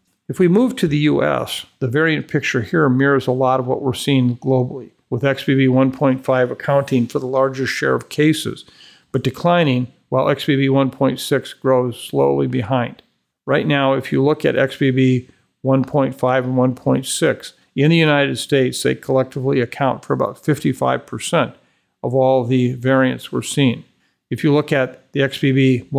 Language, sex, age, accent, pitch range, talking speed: English, male, 50-69, American, 125-140 Hz, 155 wpm